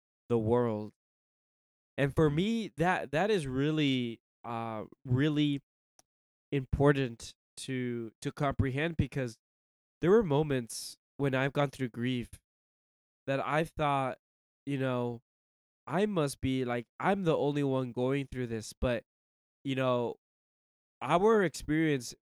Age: 20-39